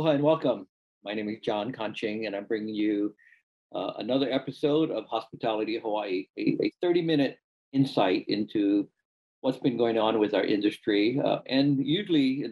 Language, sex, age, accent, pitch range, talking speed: English, male, 50-69, American, 105-155 Hz, 165 wpm